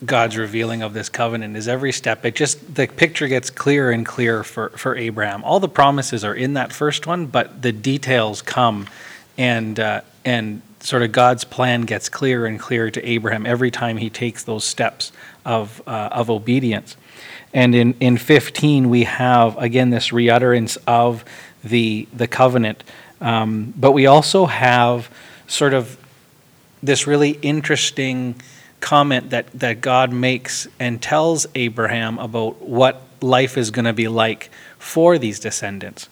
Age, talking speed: 40-59, 160 wpm